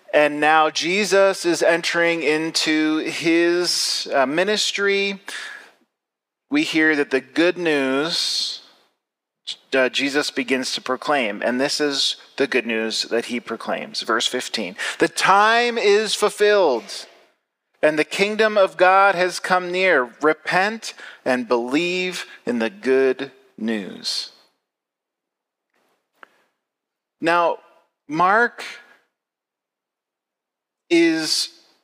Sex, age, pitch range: male, 40-59, 135-180 Hz